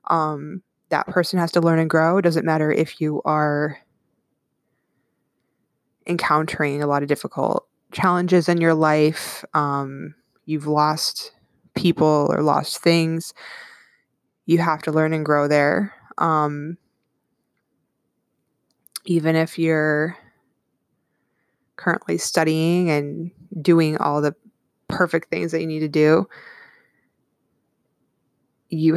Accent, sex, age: American, female, 20-39